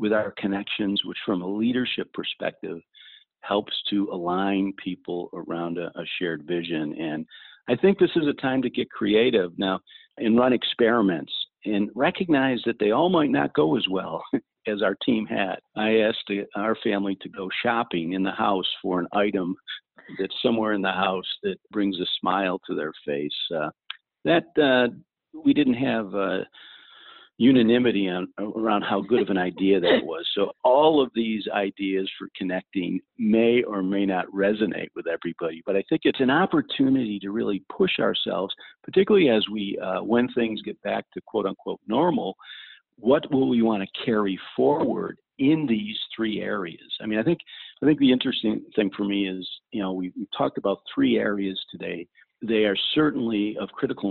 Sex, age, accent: male, 50-69, American